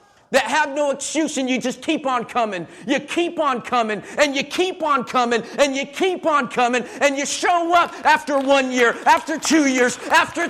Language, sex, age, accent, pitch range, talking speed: English, male, 50-69, American, 225-290 Hz, 200 wpm